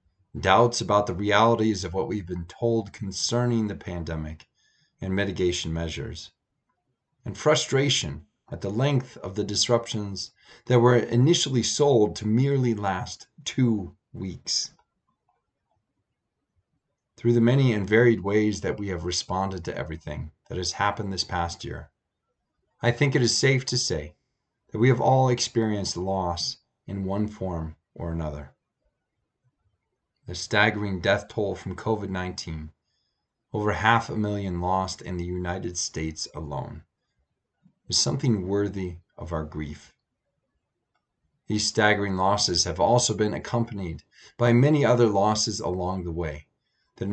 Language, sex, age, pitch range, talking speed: English, male, 30-49, 90-120 Hz, 135 wpm